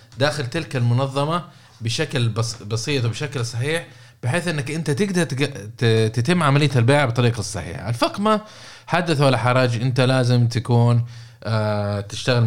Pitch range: 115-145 Hz